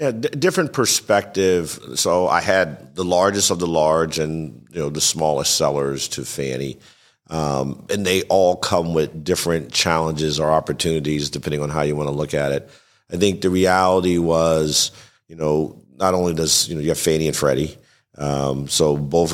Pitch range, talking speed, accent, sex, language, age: 75-90 Hz, 185 wpm, American, male, English, 50-69